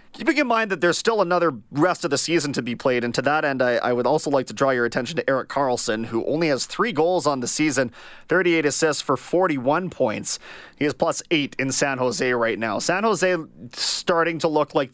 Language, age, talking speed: English, 30-49, 235 wpm